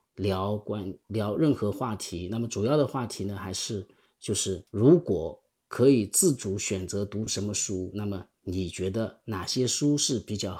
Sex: male